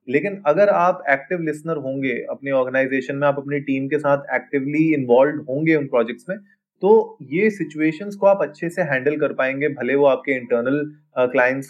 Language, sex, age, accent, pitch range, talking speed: Hindi, male, 20-39, native, 135-170 Hz, 175 wpm